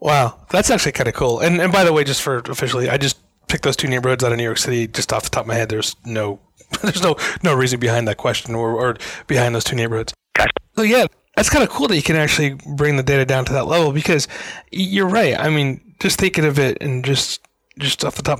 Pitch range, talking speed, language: 125-150 Hz, 260 wpm, English